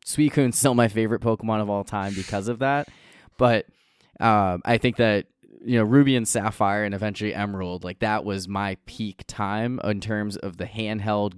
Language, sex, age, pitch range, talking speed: English, male, 20-39, 95-120 Hz, 190 wpm